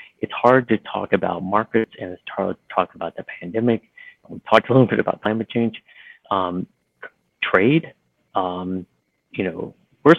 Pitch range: 95-115 Hz